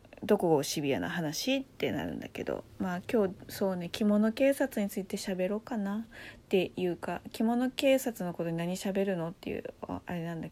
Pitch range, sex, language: 165-230 Hz, female, Japanese